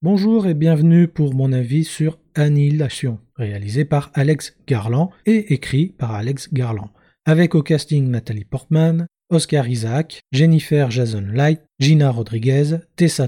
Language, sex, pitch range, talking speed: French, male, 125-160 Hz, 135 wpm